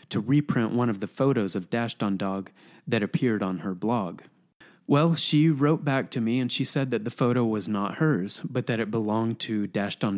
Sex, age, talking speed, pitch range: male, 30-49, 205 wpm, 110-145 Hz